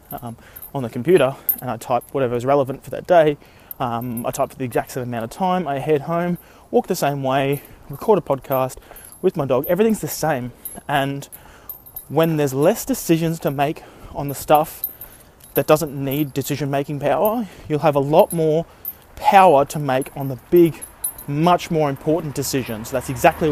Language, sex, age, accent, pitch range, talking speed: English, male, 20-39, Australian, 135-160 Hz, 180 wpm